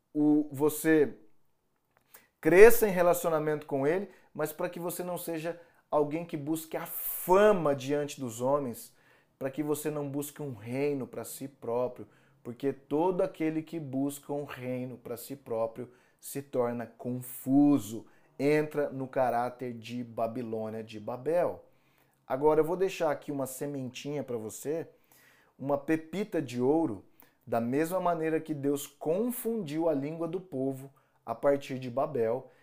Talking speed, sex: 140 wpm, male